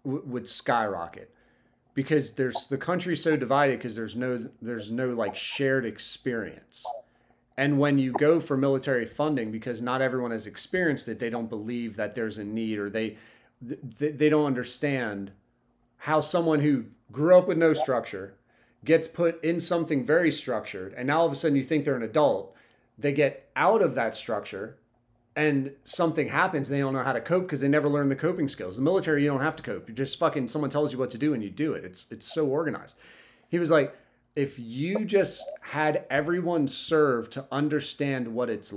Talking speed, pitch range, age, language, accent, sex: 195 wpm, 120-150 Hz, 30-49, English, American, male